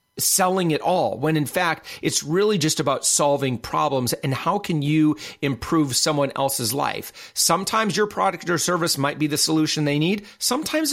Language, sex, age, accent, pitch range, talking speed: English, male, 40-59, American, 130-165 Hz, 175 wpm